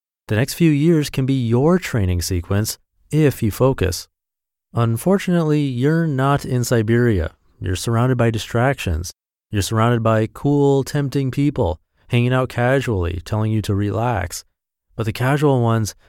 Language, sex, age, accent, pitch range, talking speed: English, male, 30-49, American, 95-130 Hz, 140 wpm